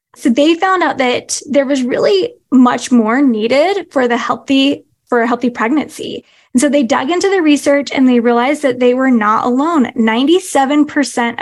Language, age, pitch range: English, 10-29, 245-300 Hz